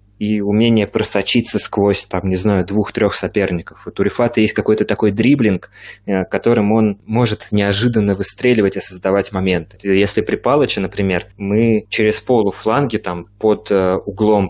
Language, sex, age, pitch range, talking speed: Russian, male, 20-39, 95-110 Hz, 135 wpm